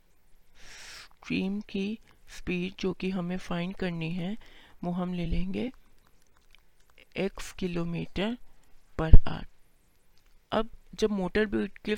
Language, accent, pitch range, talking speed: Hindi, native, 175-205 Hz, 105 wpm